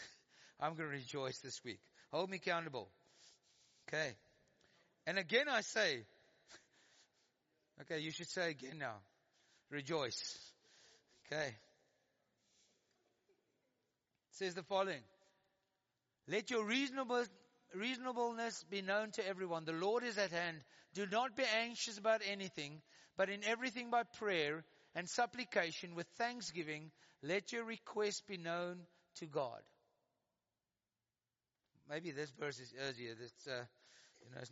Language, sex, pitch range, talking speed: English, male, 135-200 Hz, 120 wpm